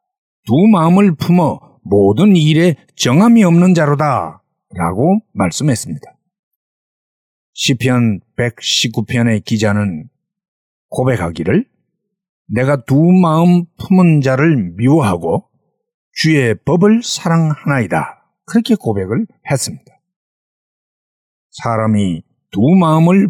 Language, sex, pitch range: Korean, male, 130-190 Hz